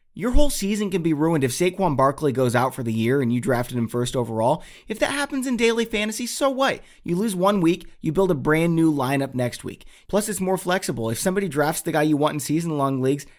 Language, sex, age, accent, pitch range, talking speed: English, male, 30-49, American, 115-155 Hz, 240 wpm